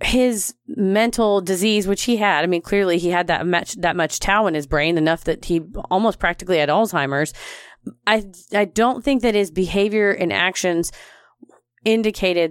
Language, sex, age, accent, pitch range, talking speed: English, female, 30-49, American, 175-220 Hz, 175 wpm